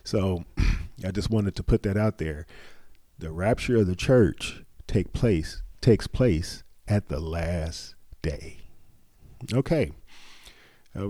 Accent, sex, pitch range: American, male, 85-110 Hz